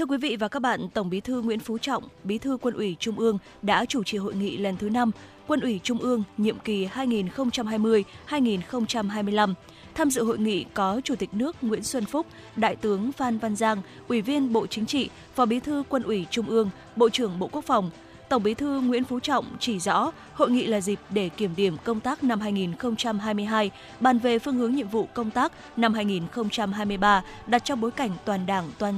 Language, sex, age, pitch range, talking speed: Vietnamese, female, 20-39, 205-250 Hz, 210 wpm